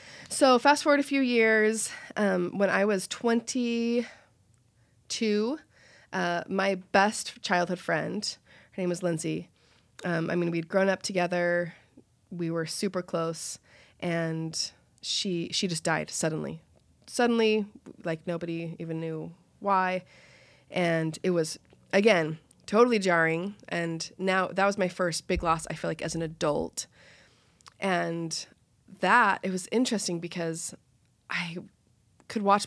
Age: 20-39